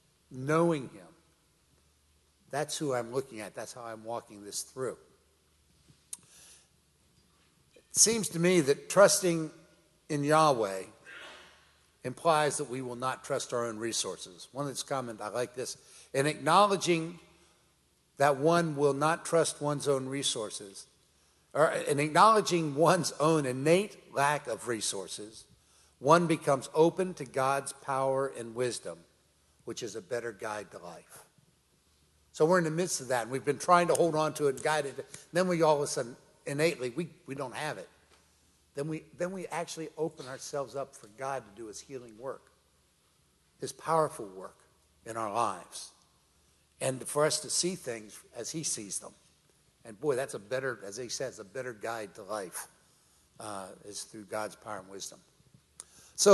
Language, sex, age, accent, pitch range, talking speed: English, male, 60-79, American, 110-160 Hz, 160 wpm